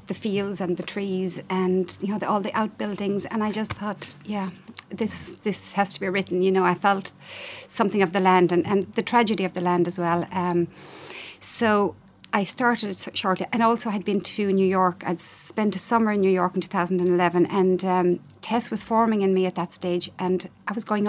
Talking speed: 210 wpm